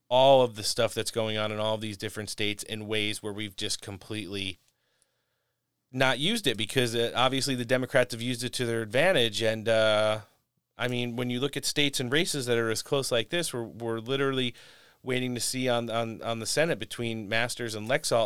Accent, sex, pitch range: American, male, 105-125 Hz